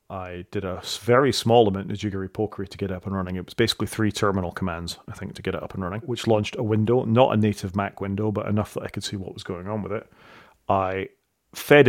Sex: male